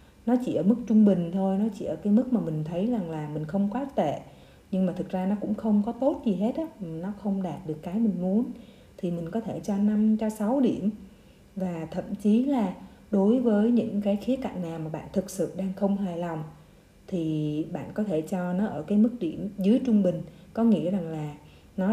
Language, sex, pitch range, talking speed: Vietnamese, female, 180-215 Hz, 235 wpm